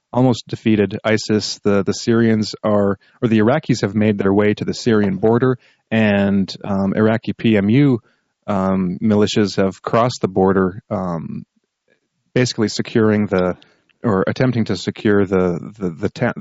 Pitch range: 95-110 Hz